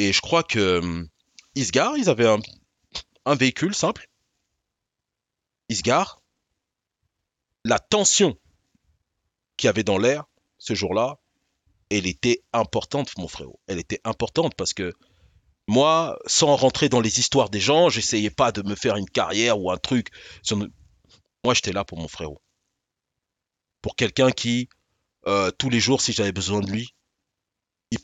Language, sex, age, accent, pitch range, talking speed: French, male, 30-49, French, 100-130 Hz, 155 wpm